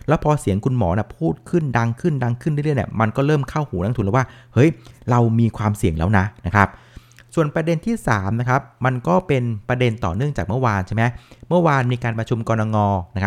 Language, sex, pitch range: Thai, male, 105-130 Hz